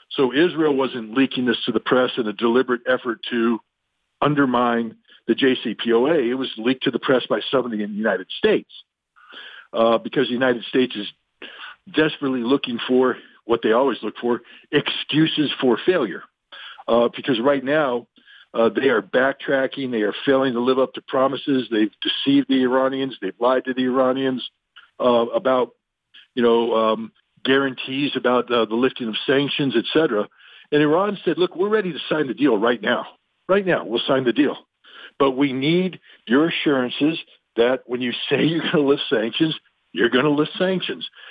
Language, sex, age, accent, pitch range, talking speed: English, male, 60-79, American, 120-150 Hz, 175 wpm